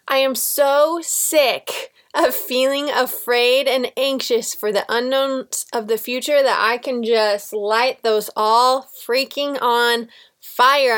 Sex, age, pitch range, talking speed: female, 20-39, 220-270 Hz, 135 wpm